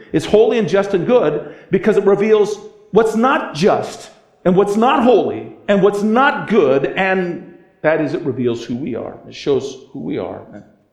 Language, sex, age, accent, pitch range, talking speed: English, male, 50-69, American, 170-245 Hz, 180 wpm